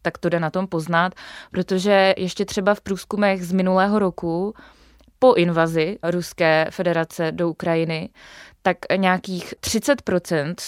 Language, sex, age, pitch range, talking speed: Czech, female, 20-39, 170-200 Hz, 130 wpm